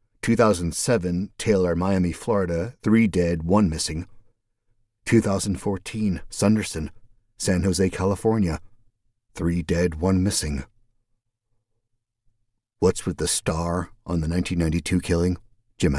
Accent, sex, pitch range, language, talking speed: American, male, 85-115 Hz, English, 100 wpm